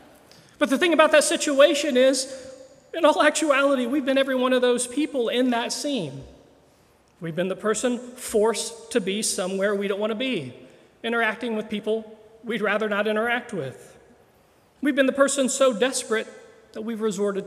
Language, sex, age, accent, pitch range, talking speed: English, male, 40-59, American, 185-240 Hz, 170 wpm